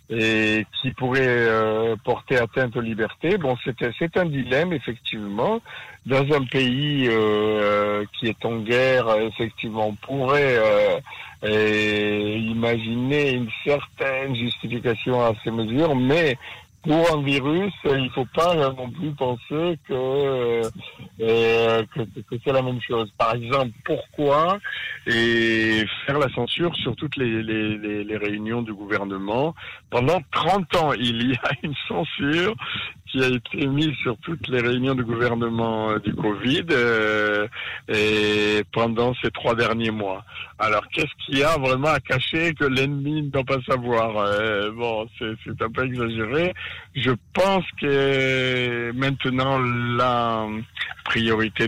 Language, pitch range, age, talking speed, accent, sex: French, 110-135 Hz, 60-79, 145 wpm, French, male